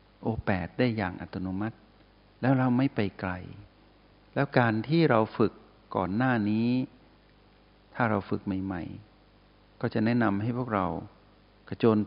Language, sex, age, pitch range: Thai, male, 60-79, 95-110 Hz